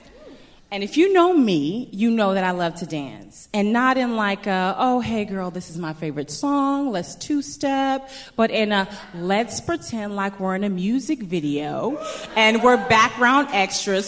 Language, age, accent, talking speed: English, 30-49, American, 185 wpm